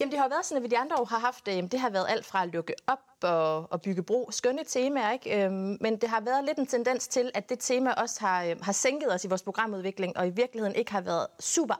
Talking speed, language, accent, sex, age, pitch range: 265 wpm, Danish, native, female, 30-49, 185-235 Hz